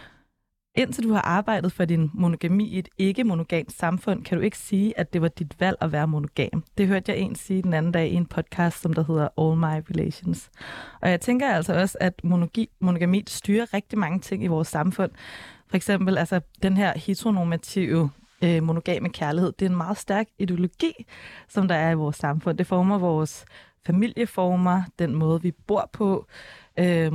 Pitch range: 165-200 Hz